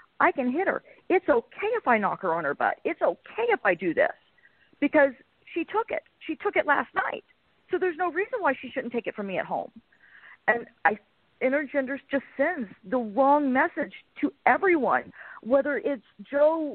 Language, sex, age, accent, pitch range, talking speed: English, female, 40-59, American, 210-300 Hz, 190 wpm